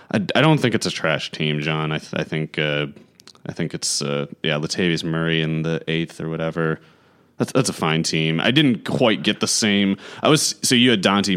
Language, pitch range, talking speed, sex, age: English, 80-105 Hz, 225 wpm, male, 30-49